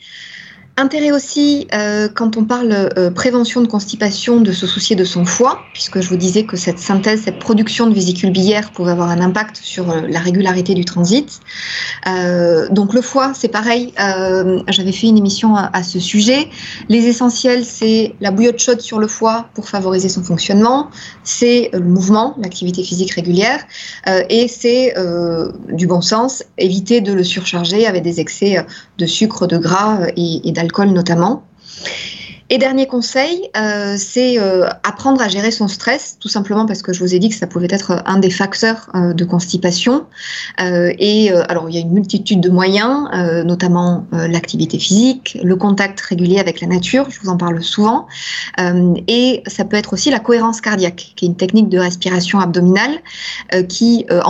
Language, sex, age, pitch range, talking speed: French, female, 20-39, 180-230 Hz, 190 wpm